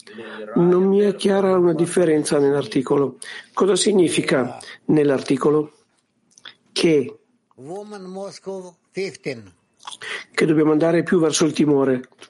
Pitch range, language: 145-185 Hz, Italian